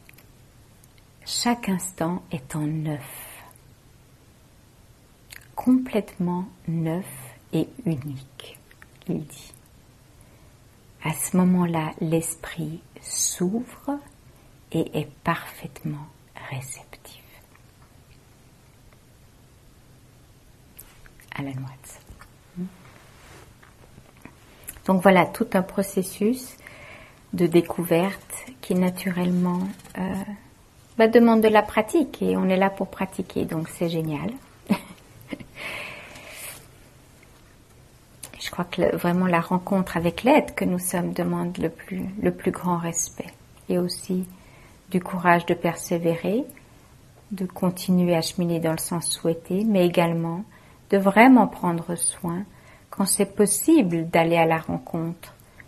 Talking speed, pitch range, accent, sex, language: 100 wpm, 140-190 Hz, French, female, English